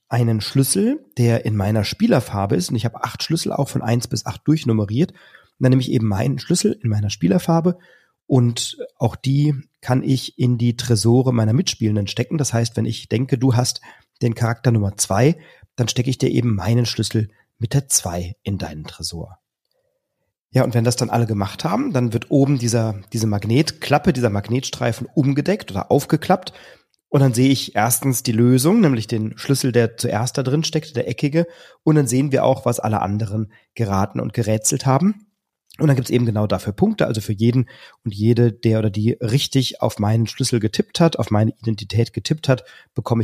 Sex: male